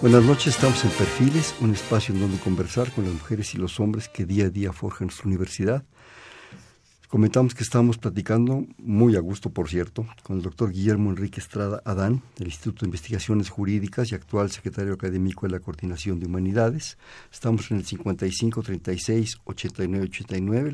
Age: 50-69